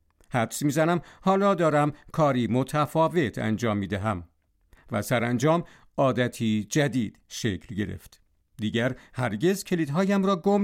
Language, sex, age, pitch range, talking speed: Persian, male, 50-69, 115-175 Hz, 120 wpm